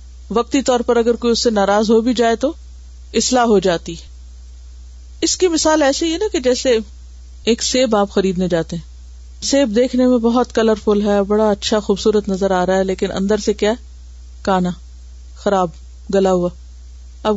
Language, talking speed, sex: Urdu, 175 wpm, female